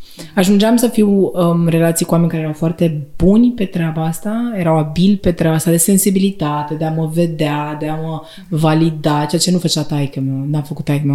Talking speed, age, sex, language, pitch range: 210 wpm, 20-39, female, Romanian, 150-180 Hz